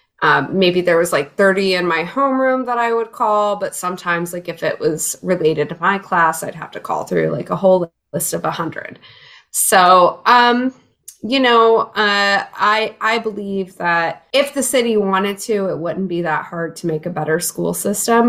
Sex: female